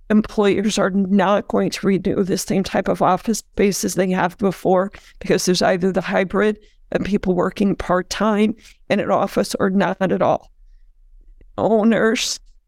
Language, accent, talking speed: English, American, 155 wpm